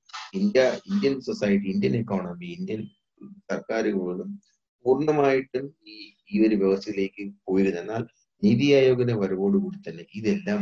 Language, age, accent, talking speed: Malayalam, 30-49, native, 115 wpm